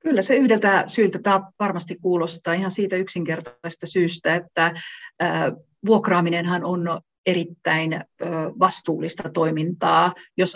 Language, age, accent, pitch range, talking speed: Finnish, 40-59, native, 160-200 Hz, 100 wpm